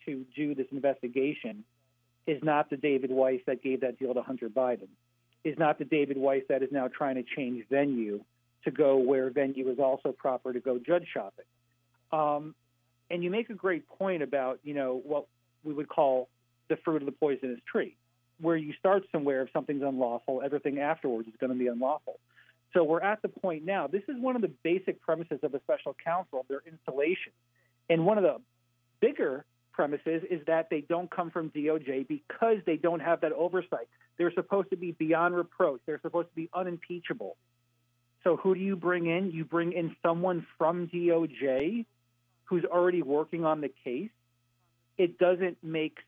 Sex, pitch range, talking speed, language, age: male, 130-170 Hz, 185 wpm, English, 40-59